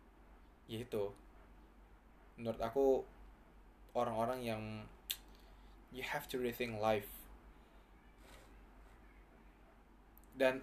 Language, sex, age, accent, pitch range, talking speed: Indonesian, male, 20-39, native, 110-145 Hz, 60 wpm